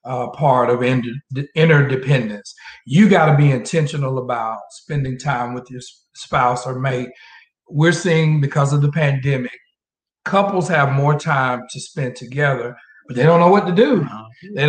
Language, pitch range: English, 130-160 Hz